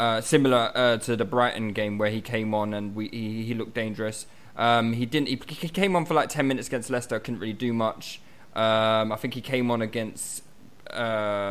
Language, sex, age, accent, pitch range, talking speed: English, male, 20-39, British, 115-145 Hz, 215 wpm